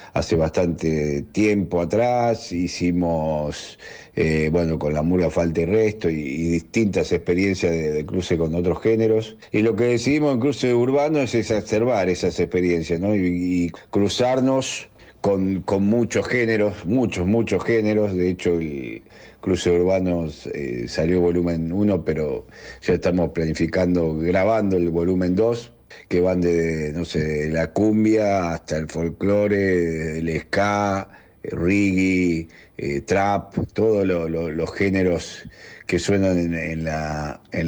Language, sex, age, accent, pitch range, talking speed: Spanish, male, 50-69, Argentinian, 80-105 Hz, 140 wpm